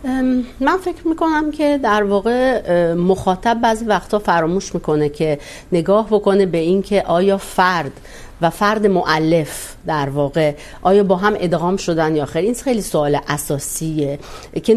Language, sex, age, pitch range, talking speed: Urdu, female, 40-59, 160-215 Hz, 140 wpm